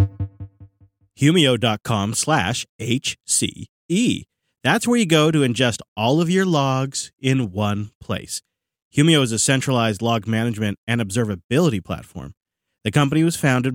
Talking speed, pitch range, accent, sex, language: 120 wpm, 110-155 Hz, American, male, English